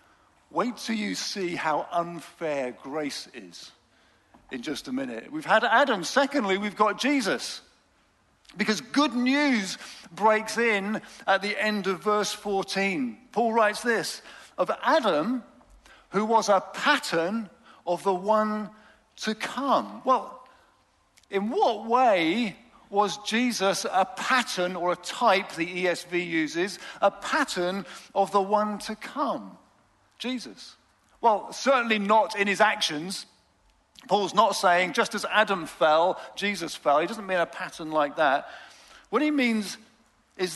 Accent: British